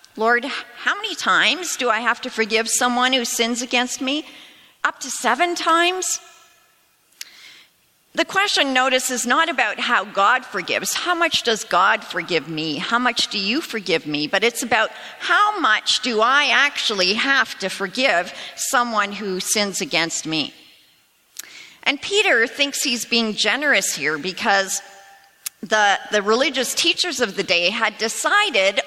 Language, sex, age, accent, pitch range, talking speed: English, female, 50-69, American, 195-290 Hz, 150 wpm